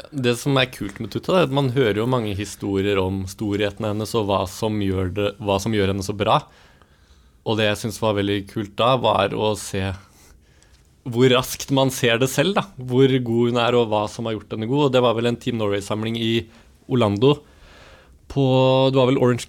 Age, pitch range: 20-39, 100-120 Hz